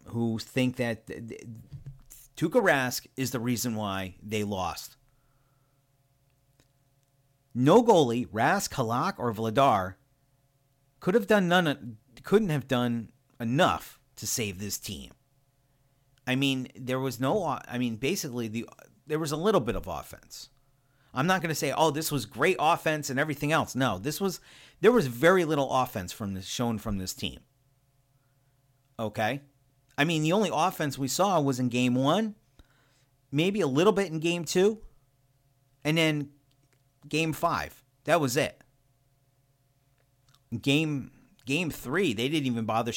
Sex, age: male, 40-59